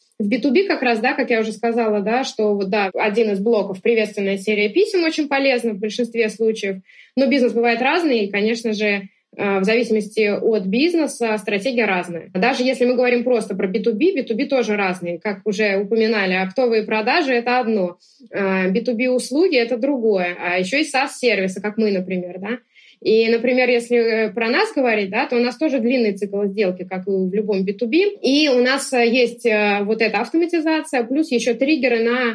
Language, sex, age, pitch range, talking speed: Russian, female, 20-39, 210-255 Hz, 180 wpm